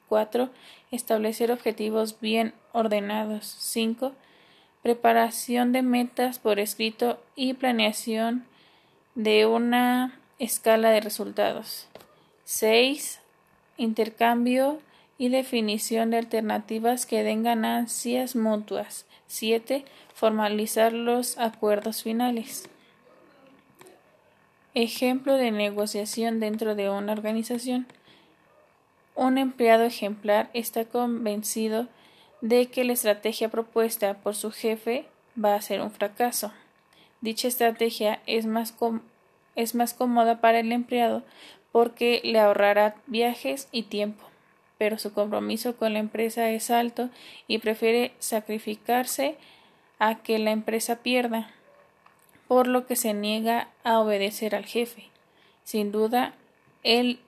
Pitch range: 215-240 Hz